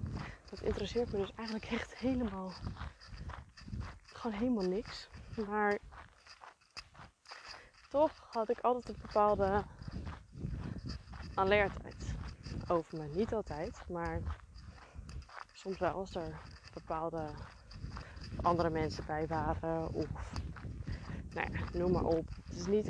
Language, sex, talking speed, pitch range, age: Dutch, female, 105 wpm, 175-230 Hz, 20-39